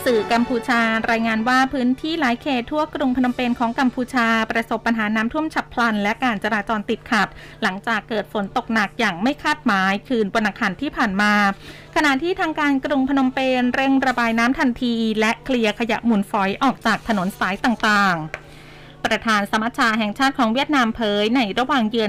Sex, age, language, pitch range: female, 20-39, Thai, 210-255 Hz